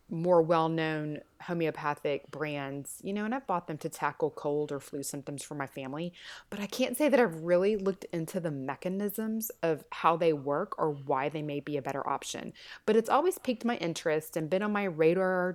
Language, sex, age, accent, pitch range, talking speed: English, female, 30-49, American, 155-215 Hz, 205 wpm